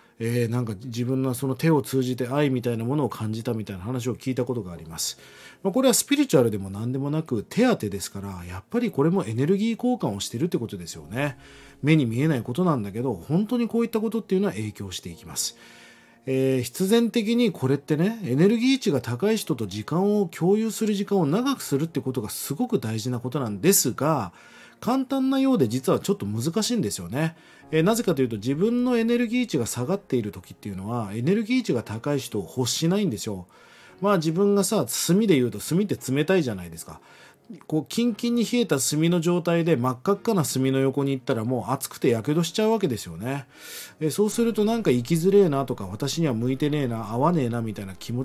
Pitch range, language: 120-200 Hz, Japanese